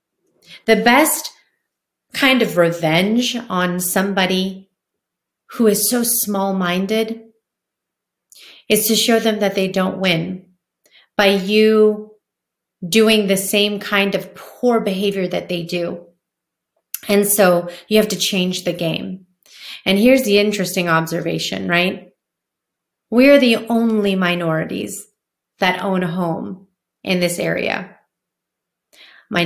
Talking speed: 115 wpm